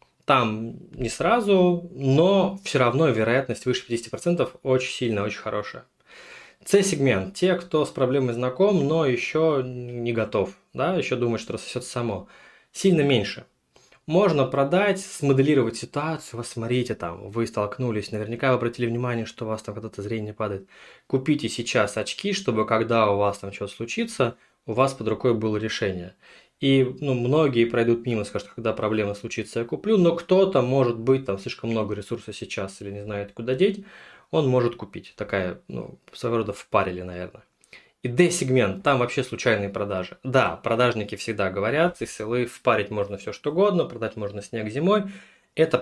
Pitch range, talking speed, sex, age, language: 110-150 Hz, 160 wpm, male, 20-39, Russian